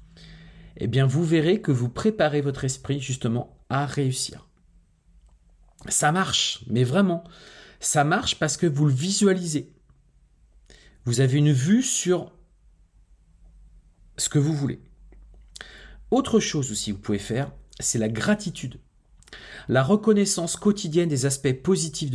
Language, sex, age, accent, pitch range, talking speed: French, male, 40-59, French, 110-165 Hz, 130 wpm